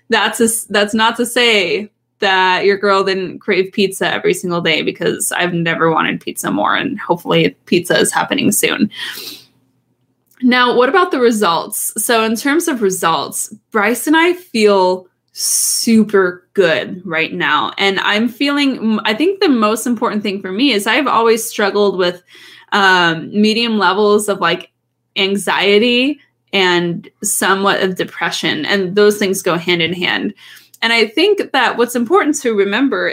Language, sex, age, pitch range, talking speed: English, female, 20-39, 185-235 Hz, 155 wpm